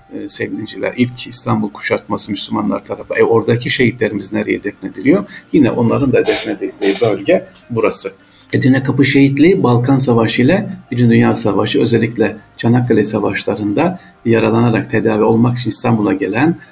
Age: 50-69